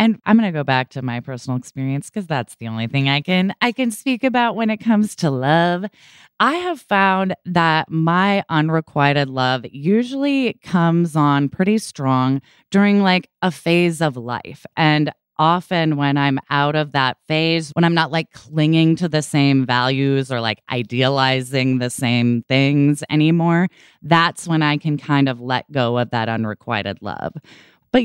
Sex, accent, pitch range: female, American, 130-175 Hz